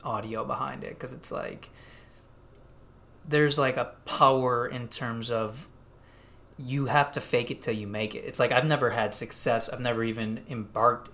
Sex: male